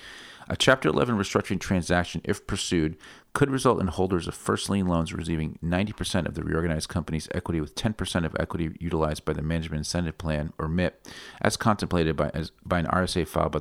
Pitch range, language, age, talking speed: 80-95 Hz, English, 40-59, 190 wpm